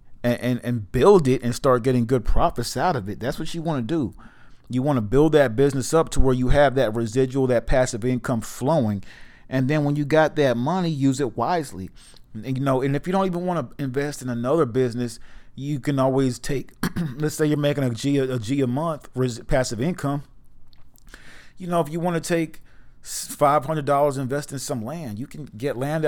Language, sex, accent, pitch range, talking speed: English, male, American, 120-145 Hz, 210 wpm